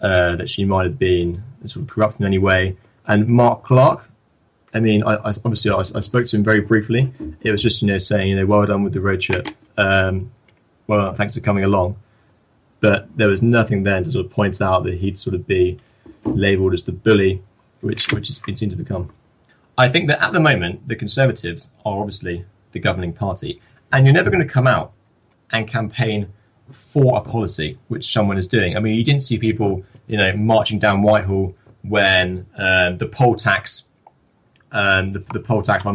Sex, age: male, 20-39